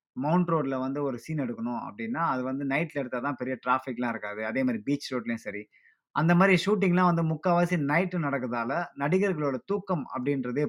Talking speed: 165 wpm